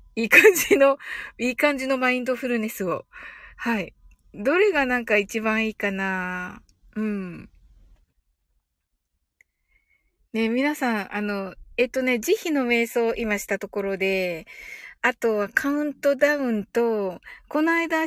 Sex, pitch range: female, 200-310 Hz